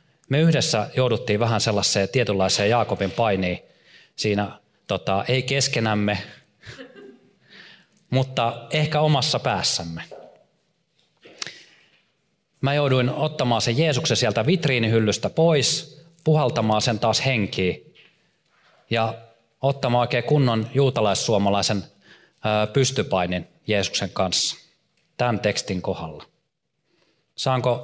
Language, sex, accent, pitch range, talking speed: Finnish, male, native, 100-140 Hz, 85 wpm